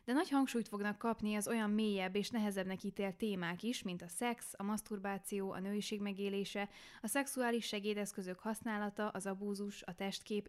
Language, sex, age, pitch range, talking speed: Hungarian, female, 10-29, 195-235 Hz, 165 wpm